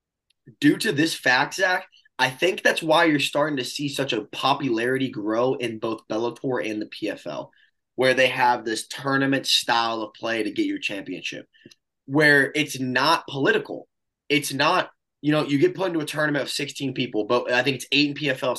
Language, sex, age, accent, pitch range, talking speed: English, male, 20-39, American, 130-160 Hz, 190 wpm